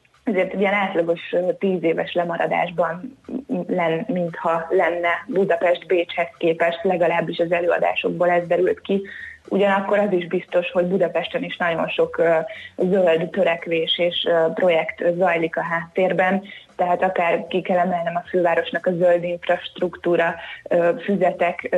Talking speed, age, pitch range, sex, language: 130 wpm, 20-39, 170-185 Hz, female, Hungarian